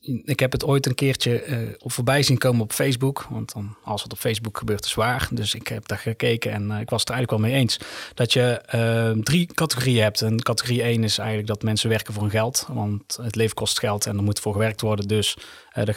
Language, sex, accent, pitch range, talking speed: Dutch, male, Dutch, 110-125 Hz, 250 wpm